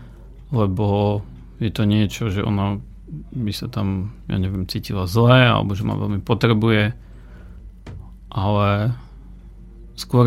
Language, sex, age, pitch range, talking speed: Slovak, male, 40-59, 100-120 Hz, 115 wpm